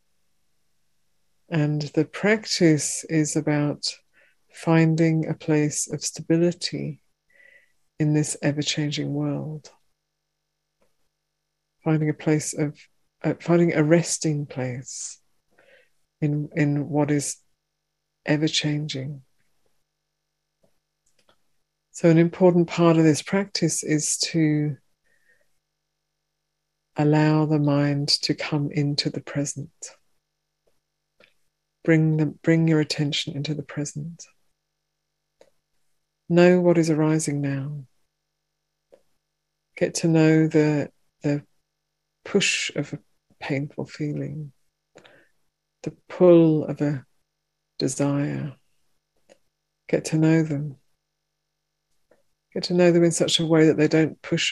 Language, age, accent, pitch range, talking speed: English, 50-69, British, 145-160 Hz, 100 wpm